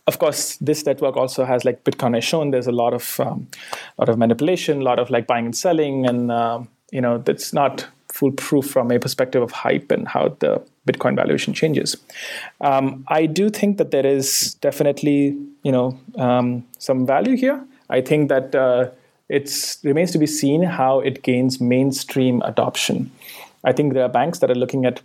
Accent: Indian